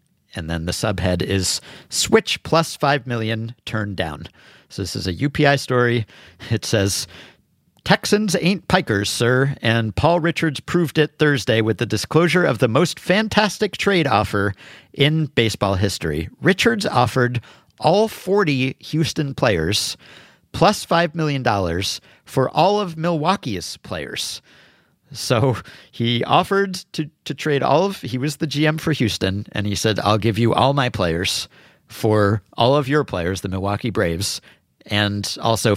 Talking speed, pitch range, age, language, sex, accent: 150 wpm, 105-155 Hz, 50-69, English, male, American